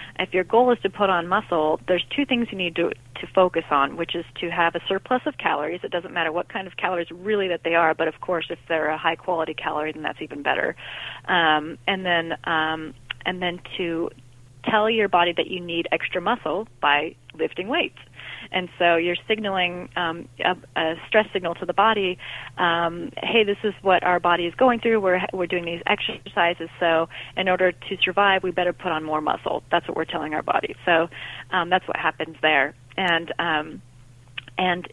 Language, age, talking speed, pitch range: English, 30-49, 205 wpm, 165-195 Hz